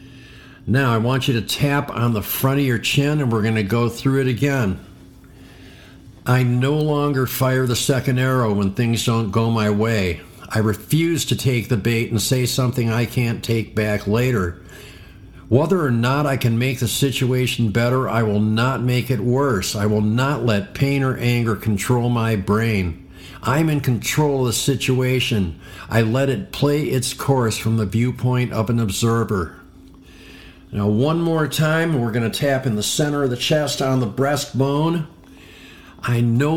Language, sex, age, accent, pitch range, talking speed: English, male, 50-69, American, 105-130 Hz, 180 wpm